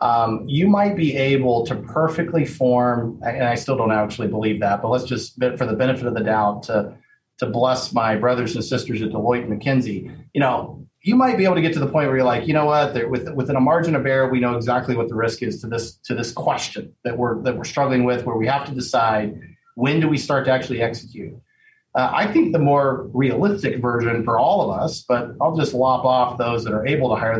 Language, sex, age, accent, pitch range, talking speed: English, male, 40-59, American, 120-145 Hz, 240 wpm